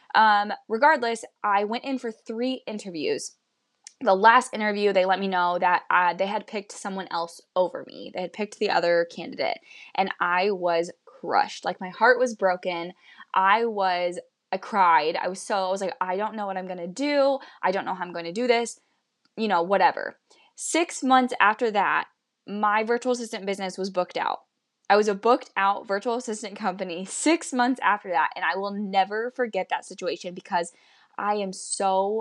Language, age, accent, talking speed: English, 10-29, American, 190 wpm